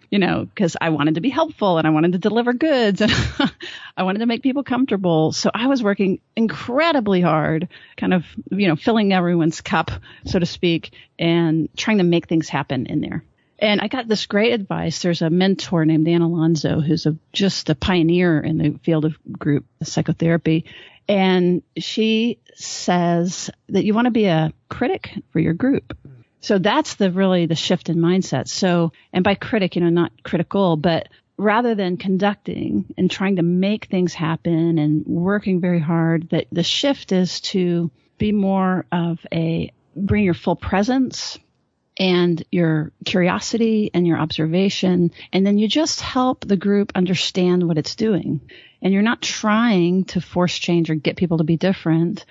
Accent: American